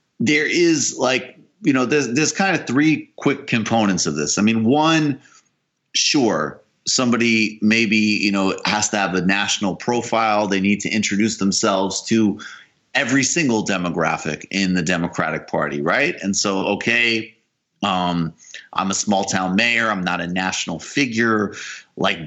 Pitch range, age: 100-145 Hz, 30-49